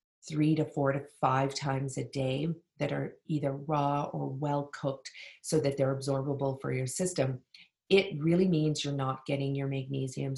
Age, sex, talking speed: 40-59, female, 175 wpm